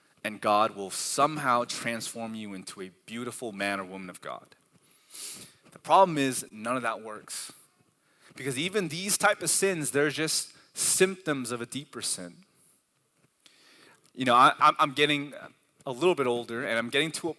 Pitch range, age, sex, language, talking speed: 120-150 Hz, 20-39, male, English, 160 wpm